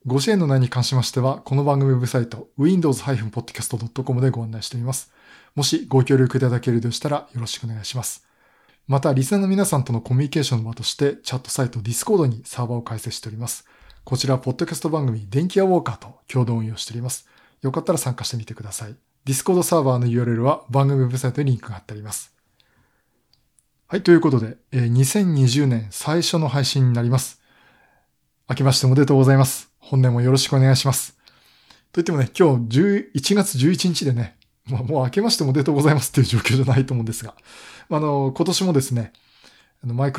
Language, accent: Japanese, native